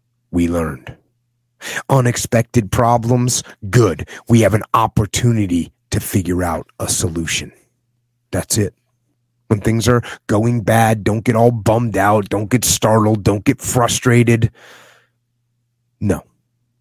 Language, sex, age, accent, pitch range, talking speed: English, male, 30-49, American, 105-120 Hz, 120 wpm